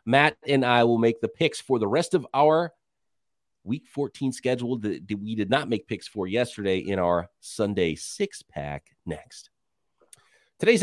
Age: 30-49